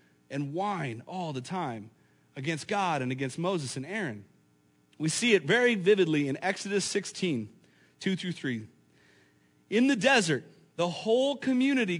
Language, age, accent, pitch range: English, 30-49, American, 130-210 Hz